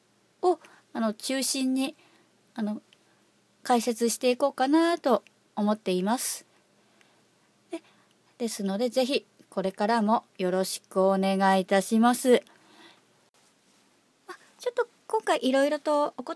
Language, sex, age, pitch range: Japanese, female, 30-49, 215-300 Hz